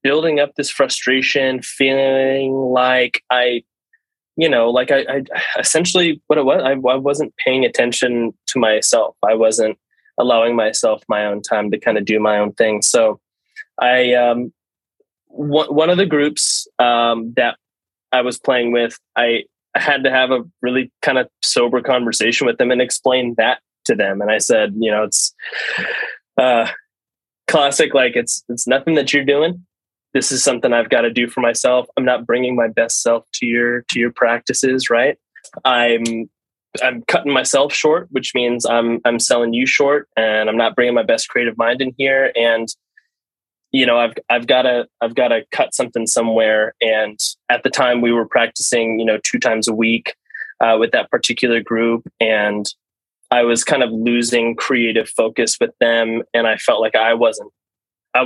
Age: 20-39